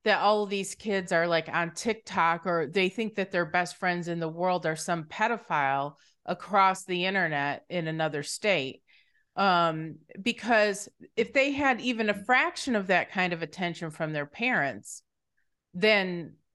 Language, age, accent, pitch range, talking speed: English, 30-49, American, 165-215 Hz, 165 wpm